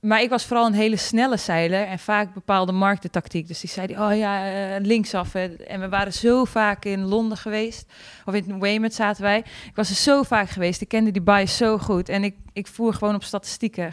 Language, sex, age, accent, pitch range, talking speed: Dutch, female, 20-39, Dutch, 185-215 Hz, 215 wpm